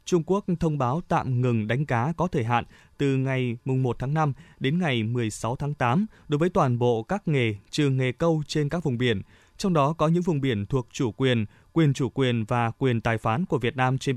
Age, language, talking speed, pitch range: 20-39, Vietnamese, 230 wpm, 120-160 Hz